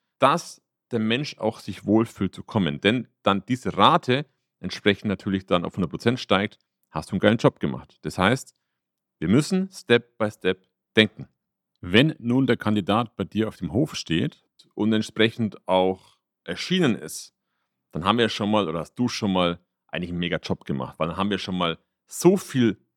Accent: German